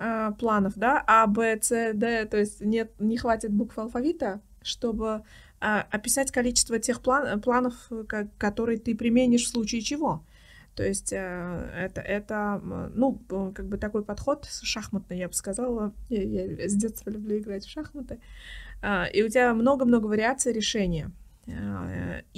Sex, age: female, 20-39